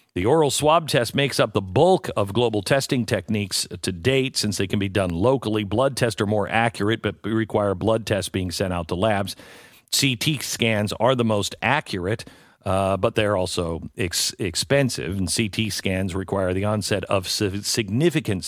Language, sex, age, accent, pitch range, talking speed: English, male, 50-69, American, 100-125 Hz, 170 wpm